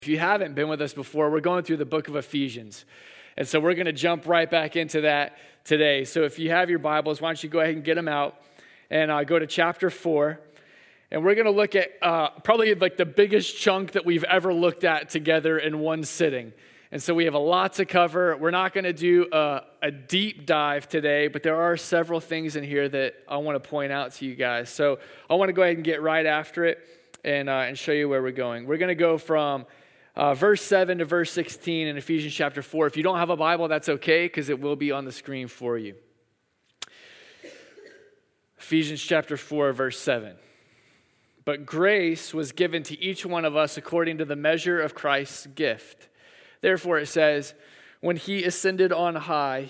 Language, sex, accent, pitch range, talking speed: English, male, American, 145-170 Hz, 220 wpm